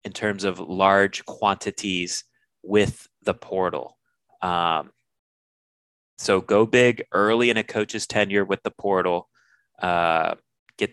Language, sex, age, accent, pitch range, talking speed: English, male, 30-49, American, 90-105 Hz, 120 wpm